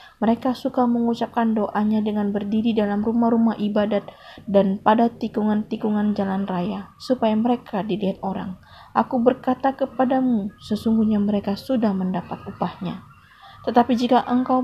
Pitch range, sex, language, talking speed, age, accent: 200-235 Hz, female, Indonesian, 120 wpm, 20-39, native